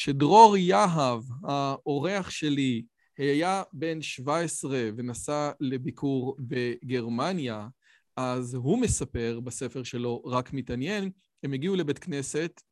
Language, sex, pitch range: Hebrew, male, 130-165 Hz